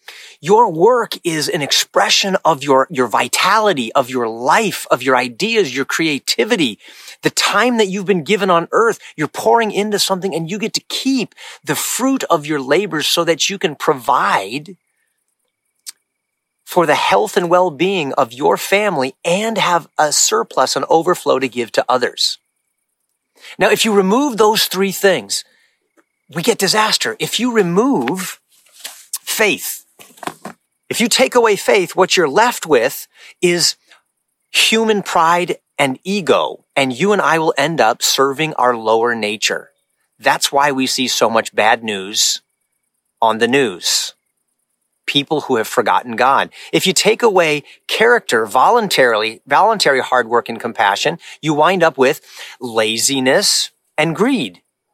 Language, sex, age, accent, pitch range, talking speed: English, male, 30-49, American, 140-215 Hz, 145 wpm